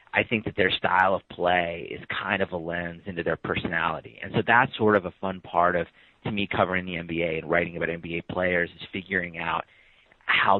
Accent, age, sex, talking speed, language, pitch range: American, 40-59, male, 215 wpm, English, 85-100 Hz